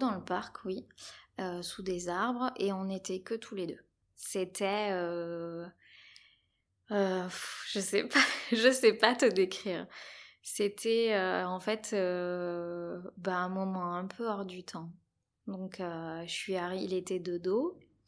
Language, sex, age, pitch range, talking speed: French, female, 20-39, 180-210 Hz, 165 wpm